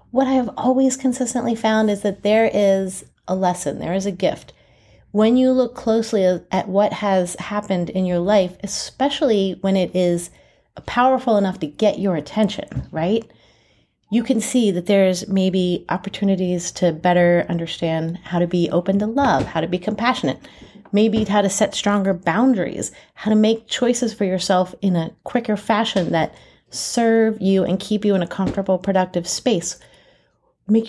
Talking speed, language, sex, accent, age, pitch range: 165 wpm, English, female, American, 30-49, 180-225 Hz